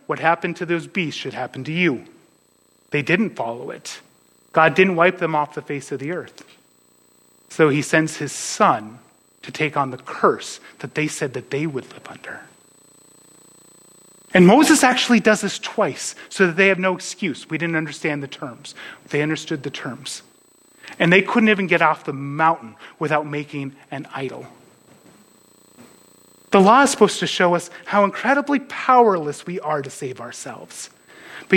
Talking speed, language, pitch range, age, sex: 170 wpm, English, 145-185 Hz, 30-49, male